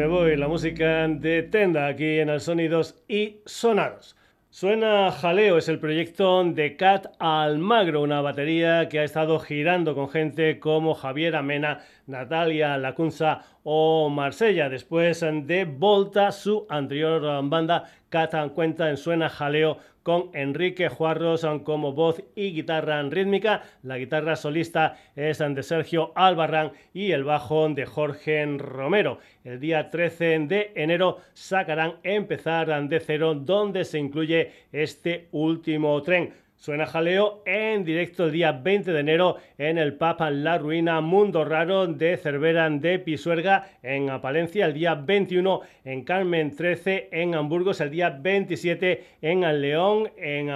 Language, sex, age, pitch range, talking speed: Spanish, male, 40-59, 150-175 Hz, 140 wpm